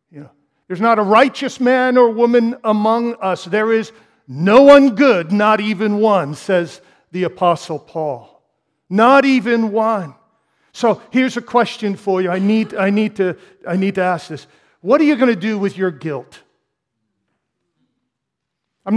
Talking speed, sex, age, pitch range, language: 160 wpm, male, 50-69, 155-225 Hz, English